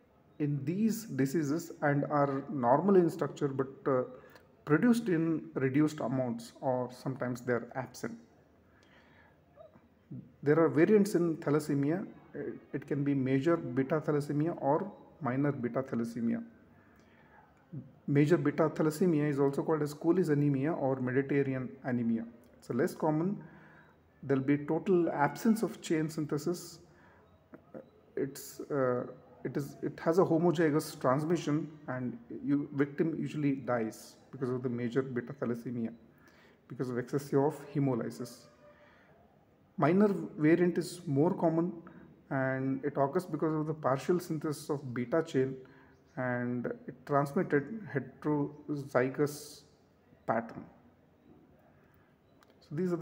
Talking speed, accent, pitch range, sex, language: 120 wpm, Indian, 130-160 Hz, male, English